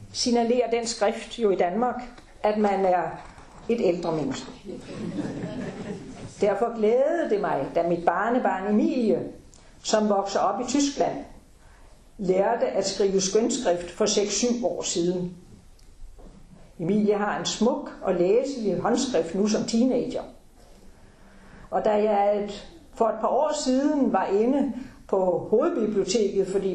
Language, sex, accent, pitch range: Danish, female, native, 195-255 Hz